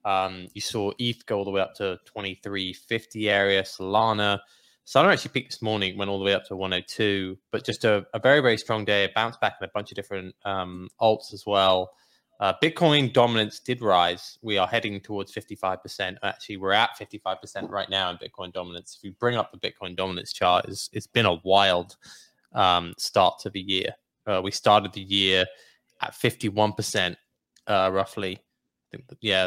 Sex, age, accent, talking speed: male, 20-39, British, 185 wpm